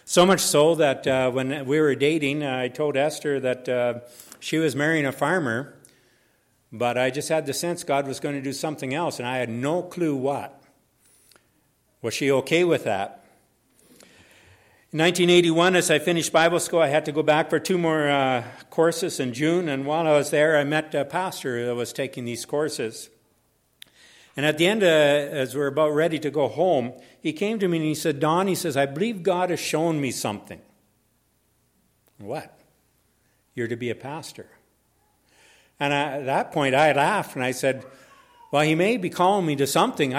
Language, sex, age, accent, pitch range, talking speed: English, male, 60-79, American, 130-165 Hz, 190 wpm